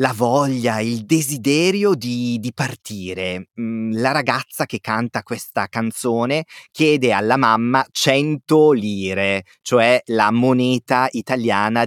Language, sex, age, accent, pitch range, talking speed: Italian, male, 30-49, native, 110-135 Hz, 110 wpm